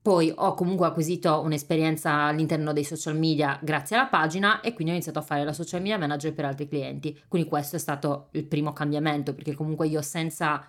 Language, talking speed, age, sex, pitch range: Italian, 200 wpm, 20-39, female, 150-170 Hz